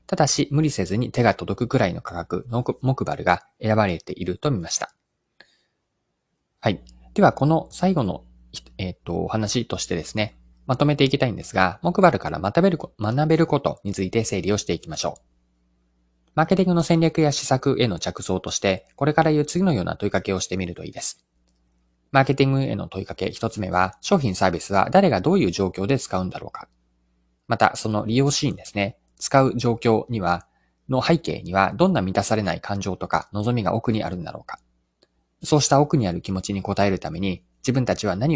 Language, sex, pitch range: Japanese, male, 90-135 Hz